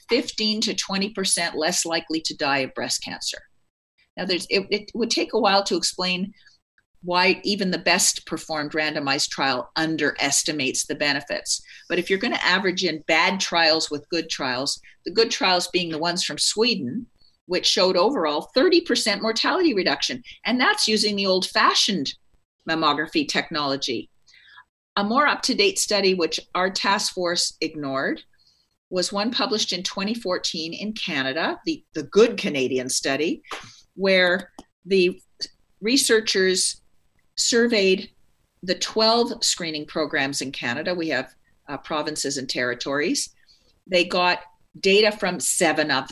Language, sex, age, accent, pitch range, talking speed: English, female, 40-59, American, 160-205 Hz, 140 wpm